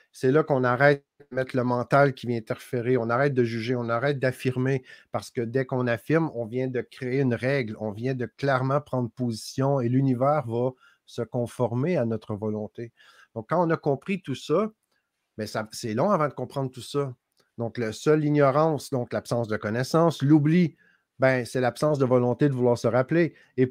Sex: male